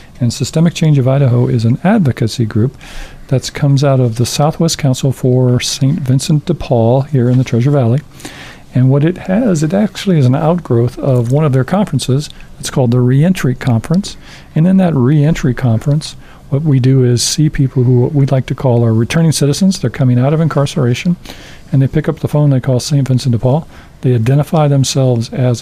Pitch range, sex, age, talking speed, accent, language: 125-150 Hz, male, 50-69, 200 wpm, American, English